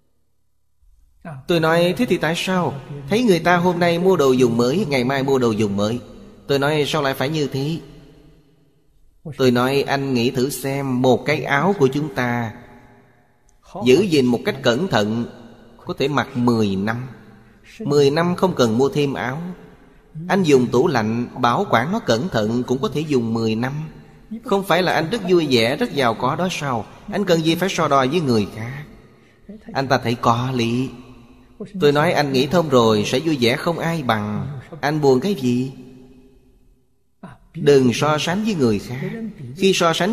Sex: male